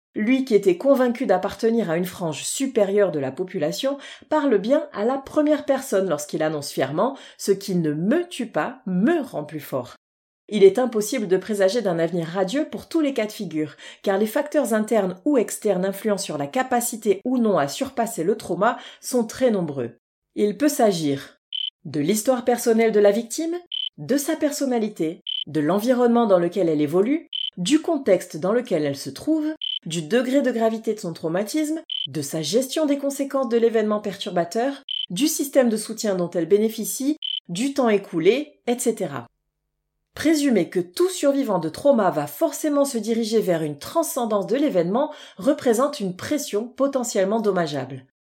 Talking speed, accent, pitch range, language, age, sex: 170 wpm, French, 185-275 Hz, French, 30-49, female